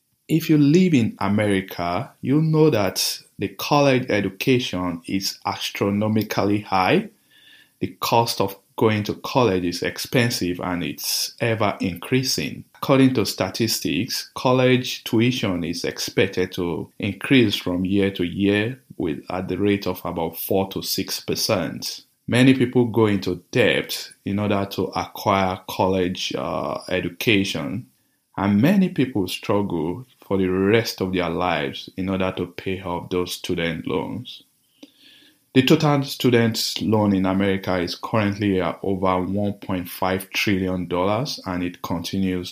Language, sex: English, male